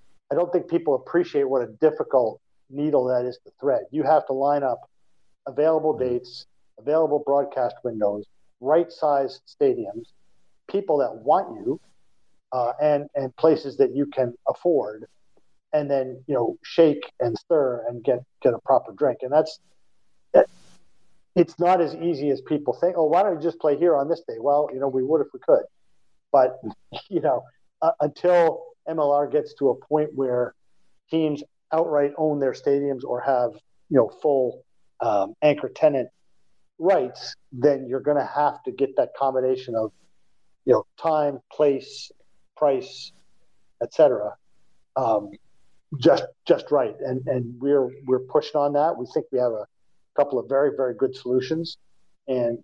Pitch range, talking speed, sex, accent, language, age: 130-160 Hz, 160 wpm, male, American, English, 50-69